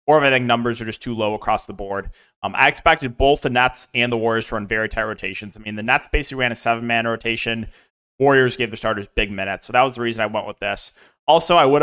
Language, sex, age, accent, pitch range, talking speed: English, male, 20-39, American, 105-140 Hz, 260 wpm